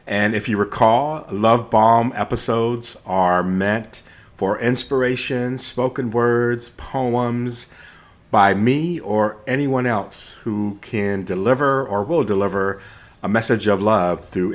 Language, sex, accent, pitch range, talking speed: English, male, American, 90-115 Hz, 125 wpm